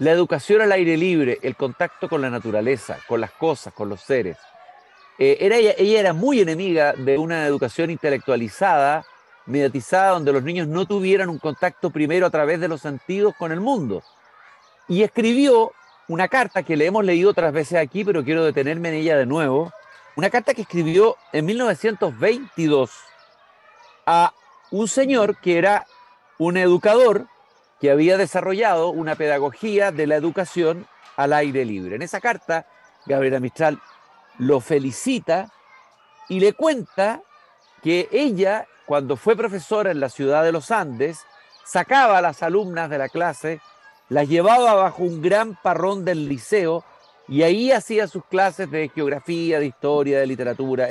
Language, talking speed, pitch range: Spanish, 155 wpm, 150-205 Hz